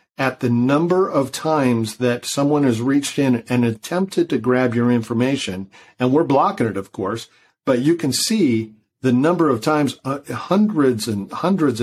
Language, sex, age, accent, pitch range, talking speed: English, male, 50-69, American, 115-140 Hz, 175 wpm